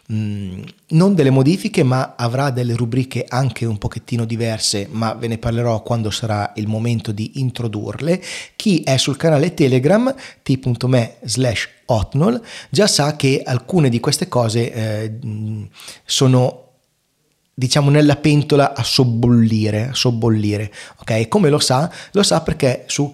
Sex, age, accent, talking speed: male, 30-49, native, 135 wpm